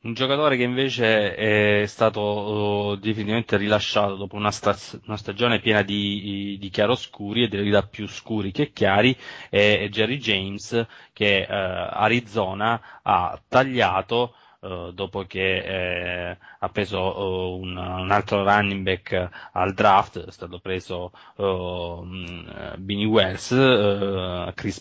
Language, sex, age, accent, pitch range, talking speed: Italian, male, 20-39, native, 95-110 Hz, 125 wpm